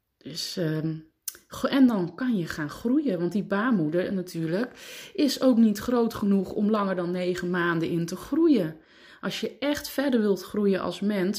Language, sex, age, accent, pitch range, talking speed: Dutch, female, 30-49, Dutch, 185-250 Hz, 170 wpm